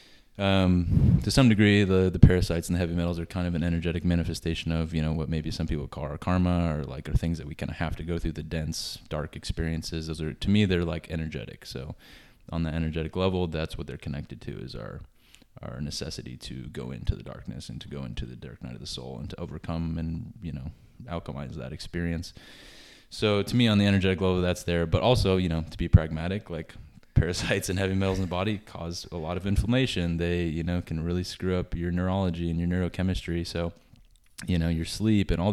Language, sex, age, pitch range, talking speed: English, male, 20-39, 80-95 Hz, 230 wpm